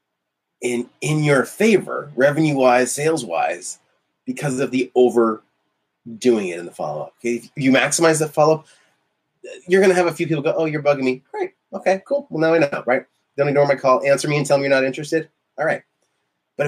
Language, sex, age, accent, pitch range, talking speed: English, male, 30-49, American, 125-165 Hz, 200 wpm